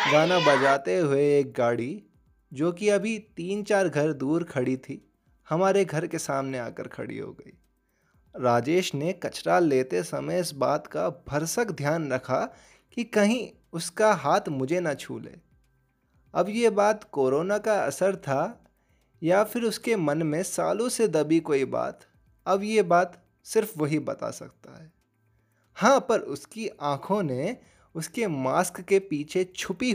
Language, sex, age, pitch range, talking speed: Hindi, male, 20-39, 135-185 Hz, 150 wpm